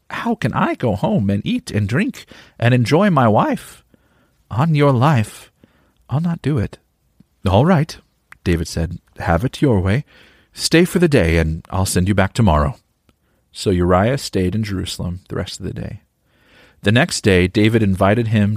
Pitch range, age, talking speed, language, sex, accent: 85-115 Hz, 40-59, 175 wpm, English, male, American